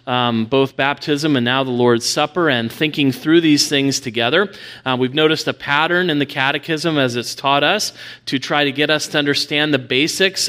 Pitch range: 130-160 Hz